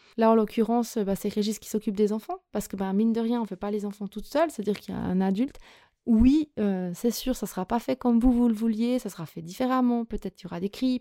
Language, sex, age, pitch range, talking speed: French, female, 20-39, 210-250 Hz, 295 wpm